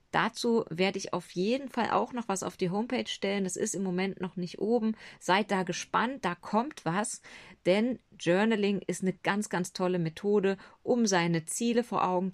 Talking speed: 190 wpm